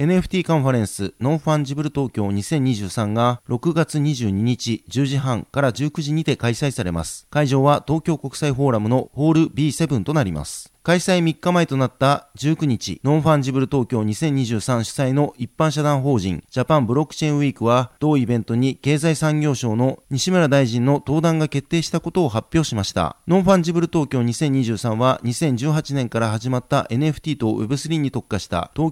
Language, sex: Japanese, male